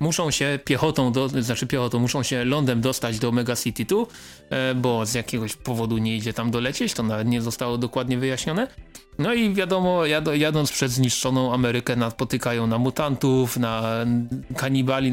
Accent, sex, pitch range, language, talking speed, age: native, male, 120-135 Hz, Polish, 165 wpm, 30-49